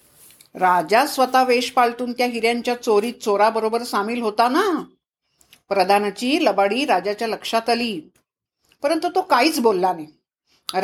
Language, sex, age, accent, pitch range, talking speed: Marathi, female, 50-69, native, 200-270 Hz, 115 wpm